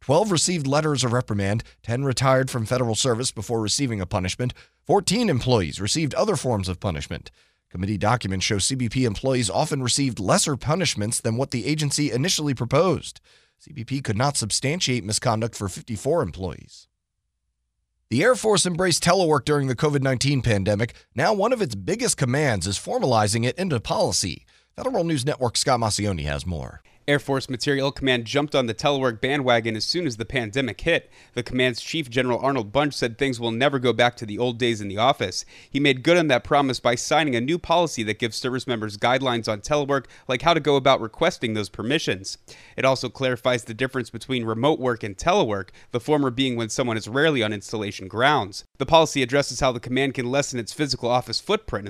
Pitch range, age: 110-145 Hz, 30-49